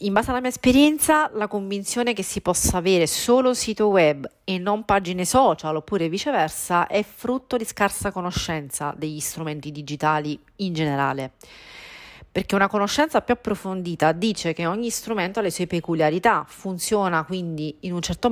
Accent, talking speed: native, 155 wpm